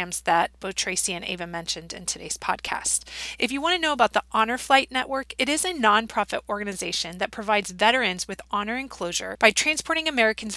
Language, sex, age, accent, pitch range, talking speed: English, female, 30-49, American, 190-245 Hz, 195 wpm